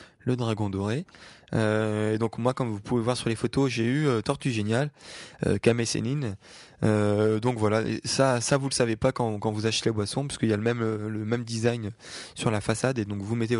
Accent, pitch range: French, 110-130 Hz